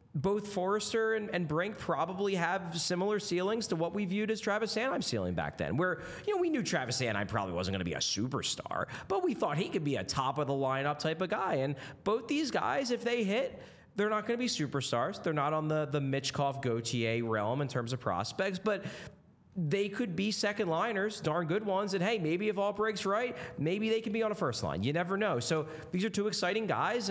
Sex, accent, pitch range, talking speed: male, American, 120-185 Hz, 225 wpm